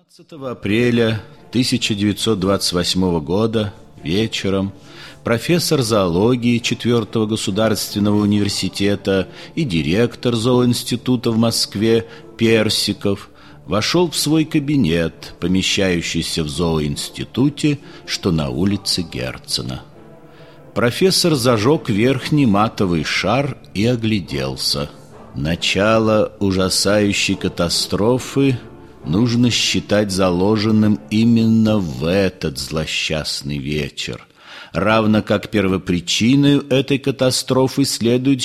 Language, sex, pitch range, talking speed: Russian, male, 90-125 Hz, 80 wpm